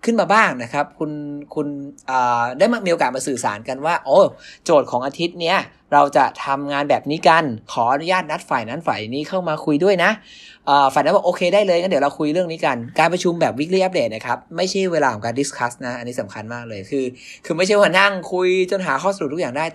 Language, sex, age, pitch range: English, male, 20-39, 140-190 Hz